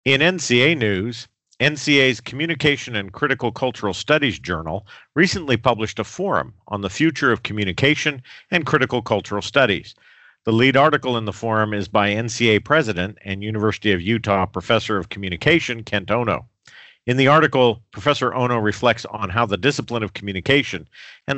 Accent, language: American, English